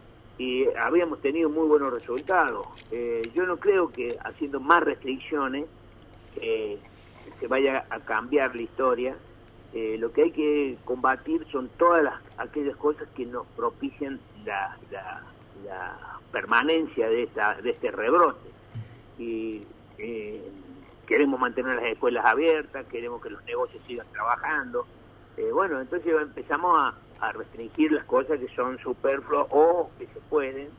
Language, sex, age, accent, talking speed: Spanish, male, 50-69, Argentinian, 140 wpm